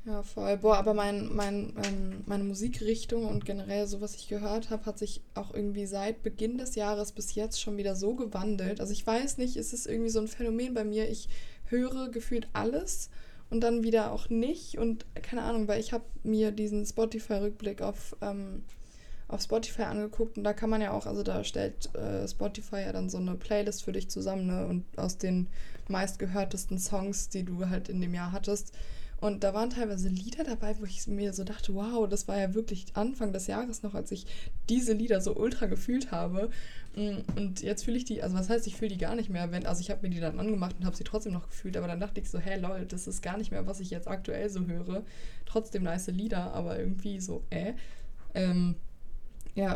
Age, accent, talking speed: 20-39, German, 210 wpm